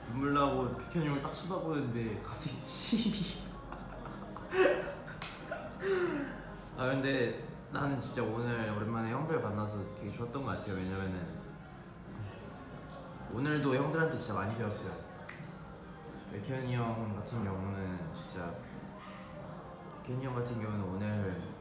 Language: English